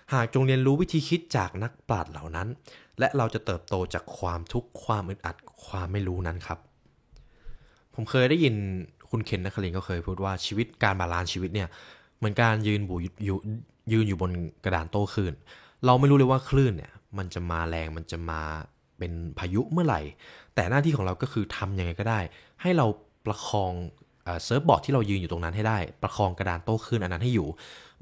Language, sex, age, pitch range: Thai, male, 20-39, 85-120 Hz